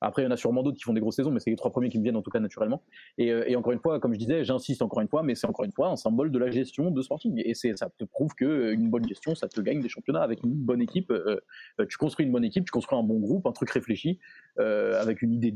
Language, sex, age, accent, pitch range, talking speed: French, male, 20-39, French, 115-145 Hz, 320 wpm